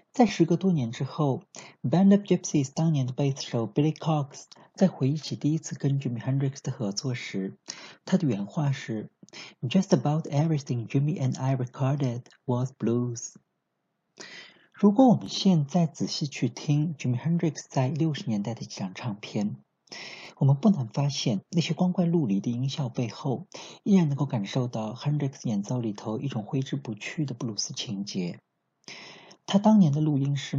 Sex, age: male, 50-69